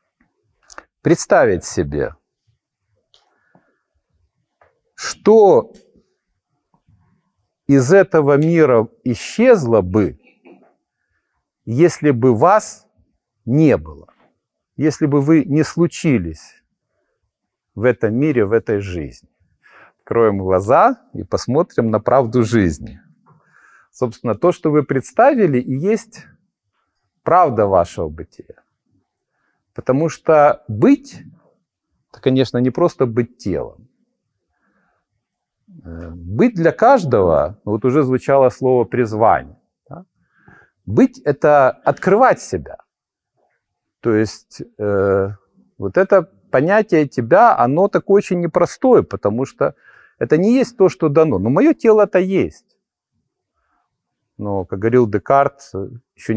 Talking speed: 95 wpm